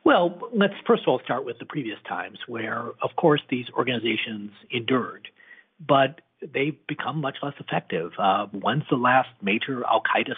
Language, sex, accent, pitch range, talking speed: English, male, American, 115-165 Hz, 160 wpm